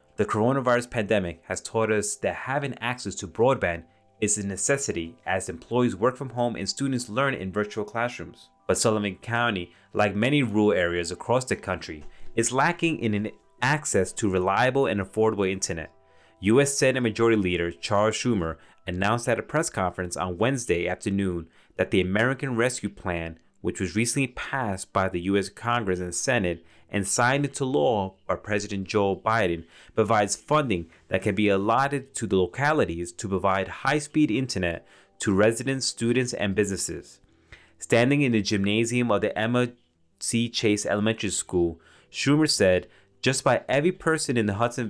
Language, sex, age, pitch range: English, male, 30-49, 90-120 Hz